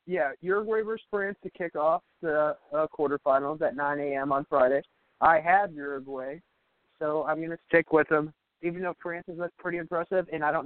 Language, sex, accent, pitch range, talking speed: English, male, American, 140-160 Hz, 195 wpm